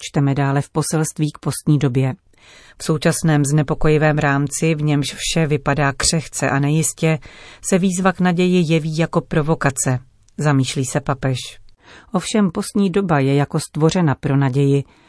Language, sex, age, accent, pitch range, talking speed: Czech, female, 40-59, native, 140-170 Hz, 145 wpm